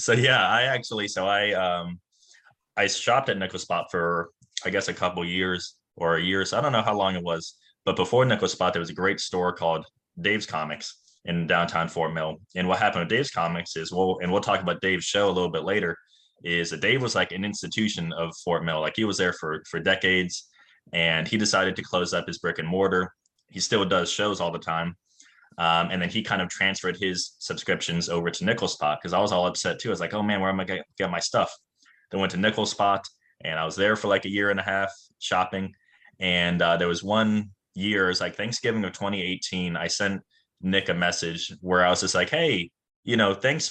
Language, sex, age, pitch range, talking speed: English, male, 20-39, 85-105 Hz, 230 wpm